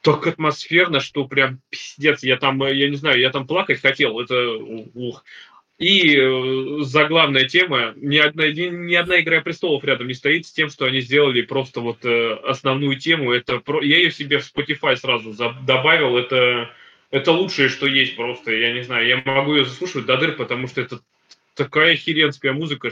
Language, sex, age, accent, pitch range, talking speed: Russian, male, 20-39, native, 125-155 Hz, 185 wpm